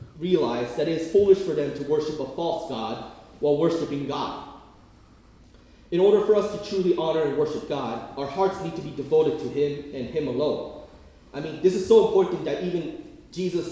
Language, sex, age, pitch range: Korean, male, 30-49, 130-180 Hz